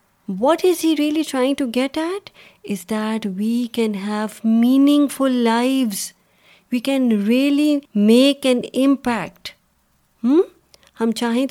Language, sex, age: Urdu, female, 30-49